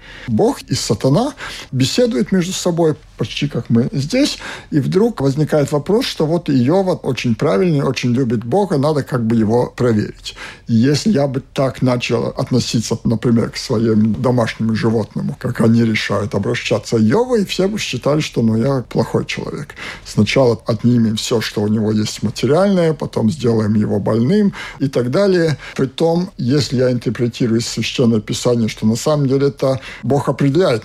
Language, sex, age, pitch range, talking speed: Russian, male, 50-69, 110-140 Hz, 165 wpm